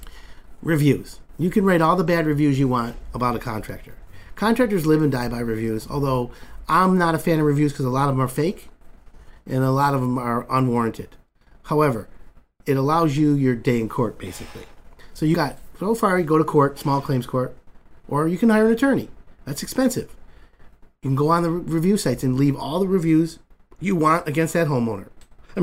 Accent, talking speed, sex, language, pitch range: American, 205 wpm, male, English, 125-170 Hz